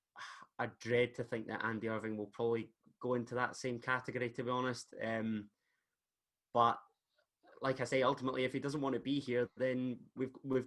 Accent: British